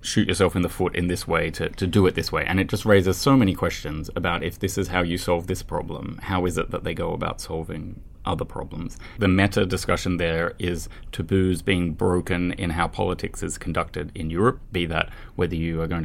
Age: 20-39